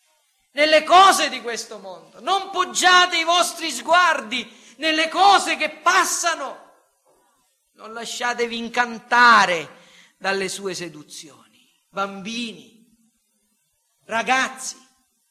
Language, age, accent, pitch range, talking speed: Italian, 40-59, native, 170-260 Hz, 85 wpm